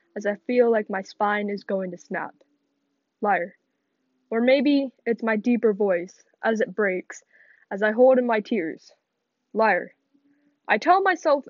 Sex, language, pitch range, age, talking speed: female, English, 210-275 Hz, 10-29, 155 wpm